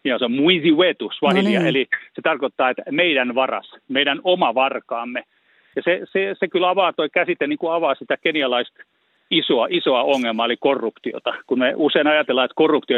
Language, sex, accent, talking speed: Finnish, male, native, 155 wpm